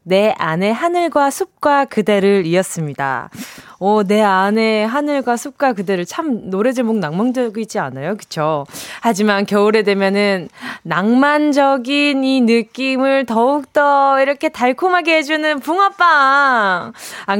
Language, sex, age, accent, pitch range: Korean, female, 20-39, native, 180-270 Hz